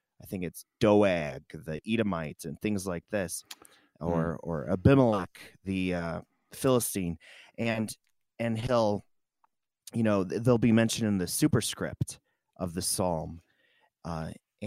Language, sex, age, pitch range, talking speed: English, male, 30-49, 90-115 Hz, 125 wpm